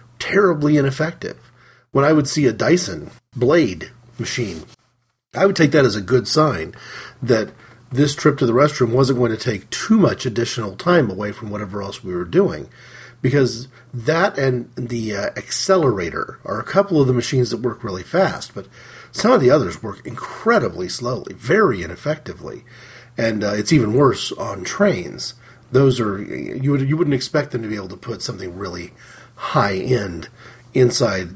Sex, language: male, English